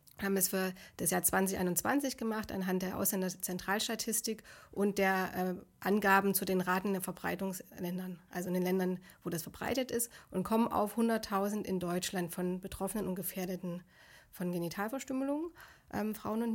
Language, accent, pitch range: German, German, 195-230 Hz